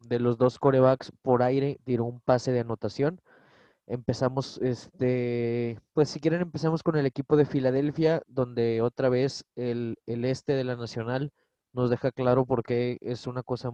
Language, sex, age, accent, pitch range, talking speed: Spanish, male, 20-39, Mexican, 120-145 Hz, 170 wpm